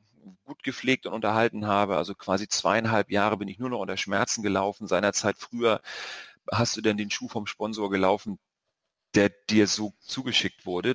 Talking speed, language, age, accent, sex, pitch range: 170 wpm, German, 40-59, German, male, 105-125 Hz